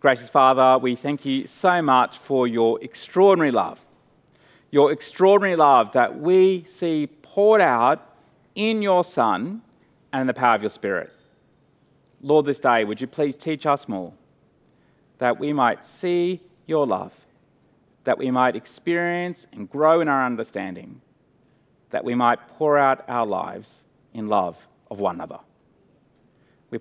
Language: English